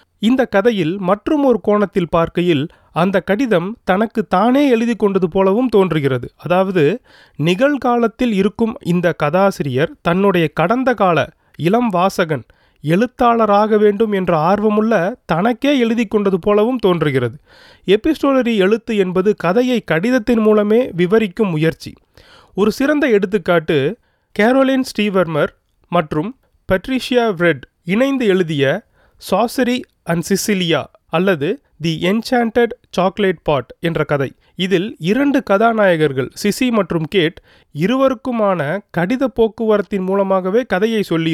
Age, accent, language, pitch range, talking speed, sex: 30-49, native, Tamil, 170-230 Hz, 105 wpm, male